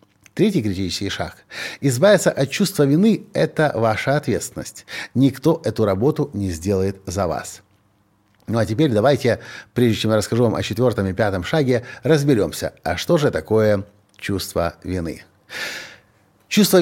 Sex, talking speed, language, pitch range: male, 140 wpm, Russian, 105-140 Hz